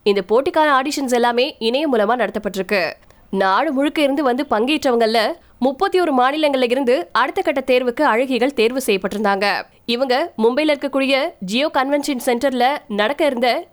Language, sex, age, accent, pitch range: Tamil, female, 20-39, native, 220-280 Hz